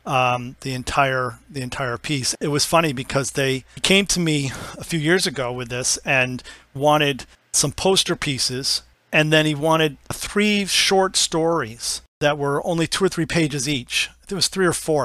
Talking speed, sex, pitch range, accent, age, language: 180 wpm, male, 130-155 Hz, American, 40-59, English